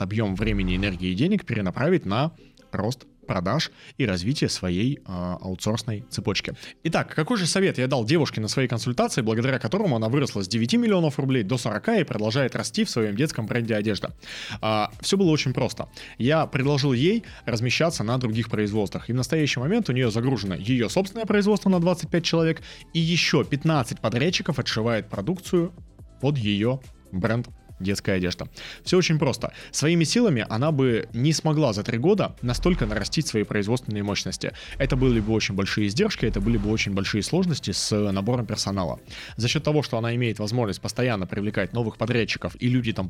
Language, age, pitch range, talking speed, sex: Russian, 20-39, 105-150 Hz, 170 wpm, male